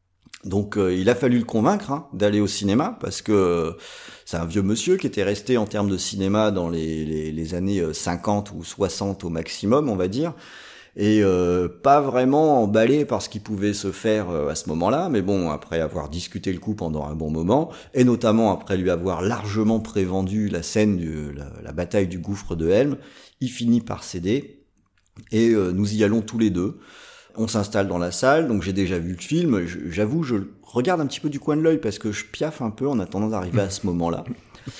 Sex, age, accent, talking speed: male, 40-59, French, 215 wpm